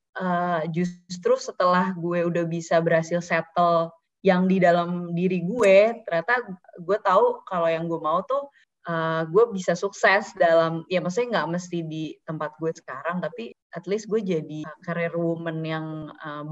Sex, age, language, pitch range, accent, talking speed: female, 20-39, Indonesian, 165-200 Hz, native, 155 wpm